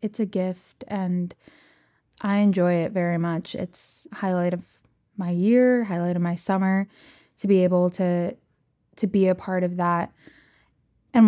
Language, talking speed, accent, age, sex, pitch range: English, 160 wpm, American, 20-39, female, 175-205 Hz